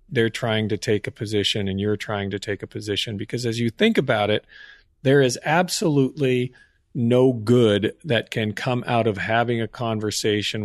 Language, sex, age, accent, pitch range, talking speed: English, male, 40-59, American, 110-135 Hz, 180 wpm